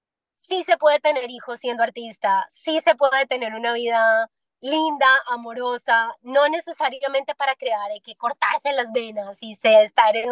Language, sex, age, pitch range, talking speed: Spanish, female, 20-39, 225-275 Hz, 155 wpm